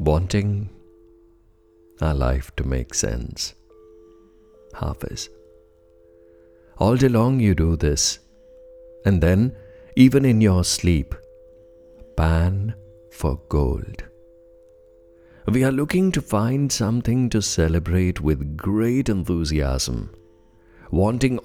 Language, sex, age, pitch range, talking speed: English, male, 60-79, 85-115 Hz, 95 wpm